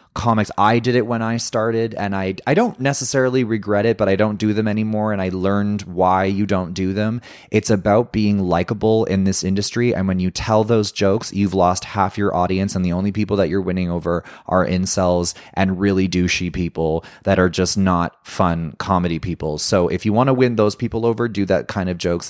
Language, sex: English, male